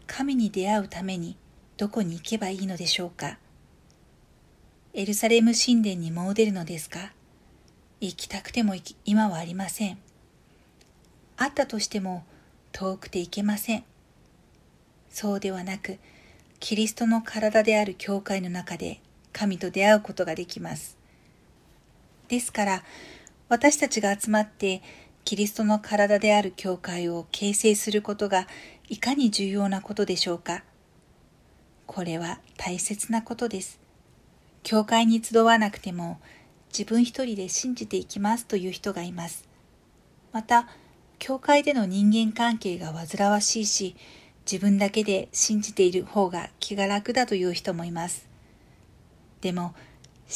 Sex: female